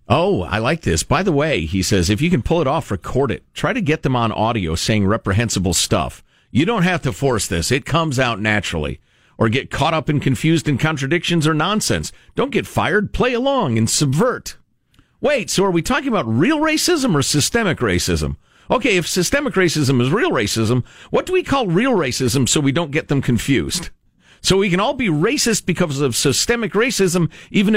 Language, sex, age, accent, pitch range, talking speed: English, male, 50-69, American, 100-165 Hz, 205 wpm